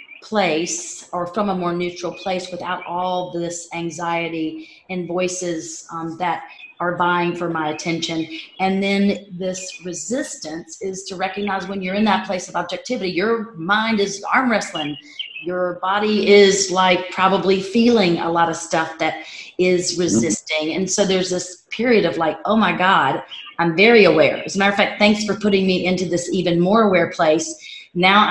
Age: 40-59